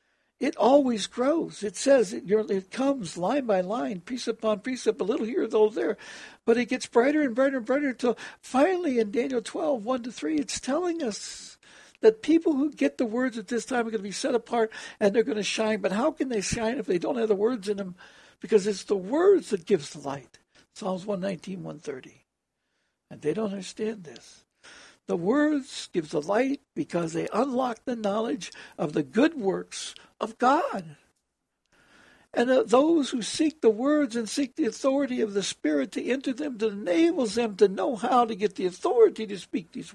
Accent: American